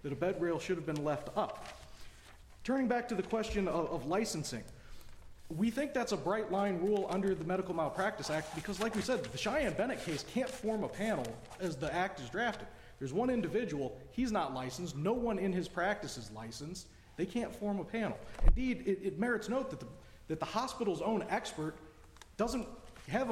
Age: 40-59